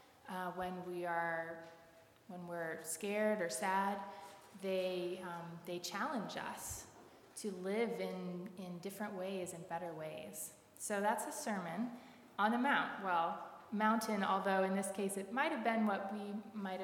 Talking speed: 155 wpm